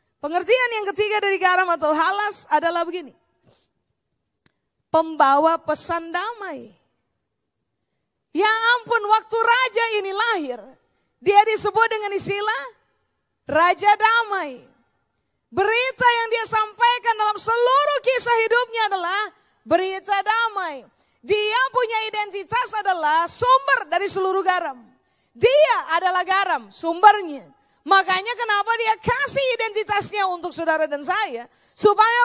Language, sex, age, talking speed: Indonesian, female, 30-49, 105 wpm